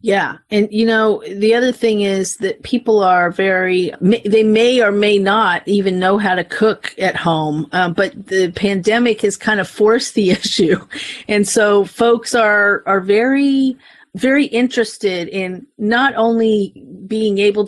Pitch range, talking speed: 185-220 Hz, 160 wpm